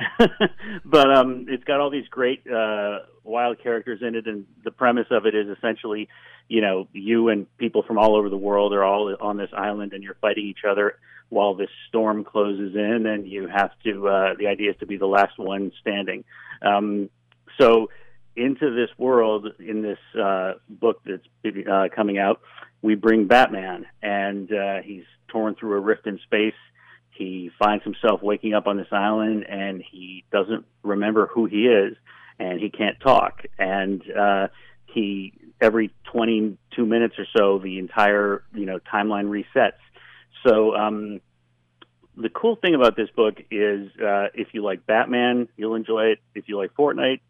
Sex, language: male, English